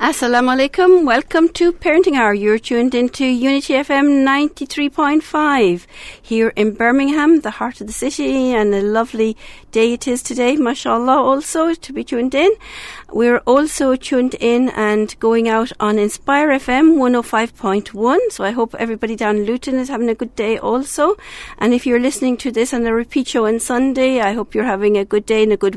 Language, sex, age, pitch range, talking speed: English, female, 50-69, 220-270 Hz, 200 wpm